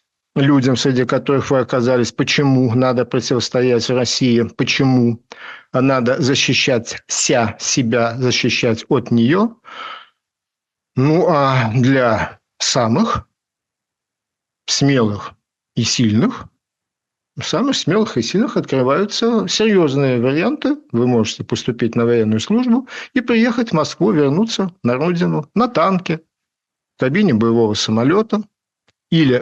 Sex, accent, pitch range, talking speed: male, native, 120-195 Hz, 105 wpm